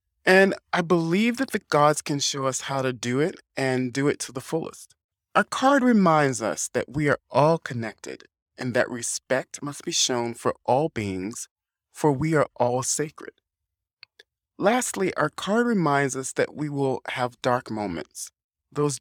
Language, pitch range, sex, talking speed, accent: English, 125-160 Hz, male, 170 wpm, American